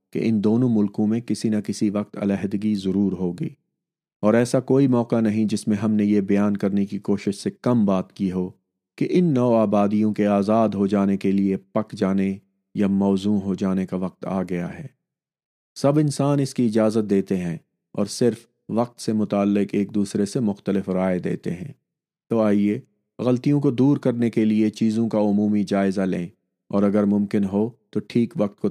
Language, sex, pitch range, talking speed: Urdu, male, 100-115 Hz, 190 wpm